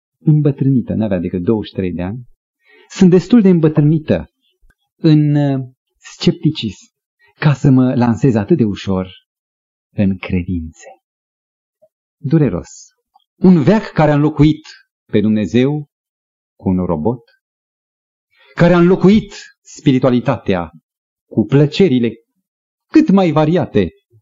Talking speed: 100 wpm